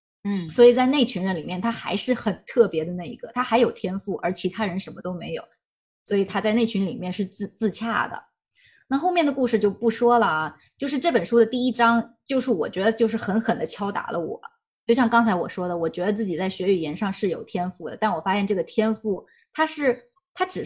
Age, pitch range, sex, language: 20-39, 195-240 Hz, female, Chinese